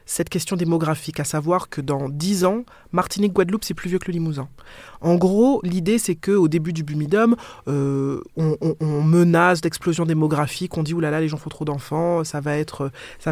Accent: French